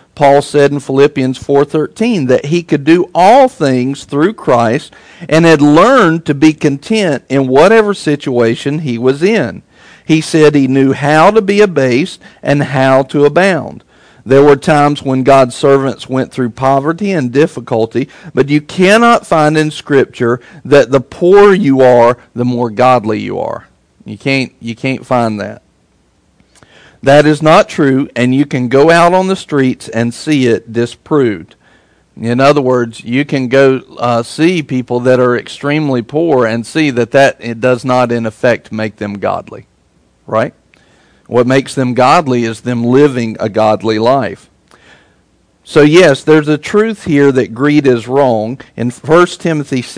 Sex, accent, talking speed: male, American, 160 wpm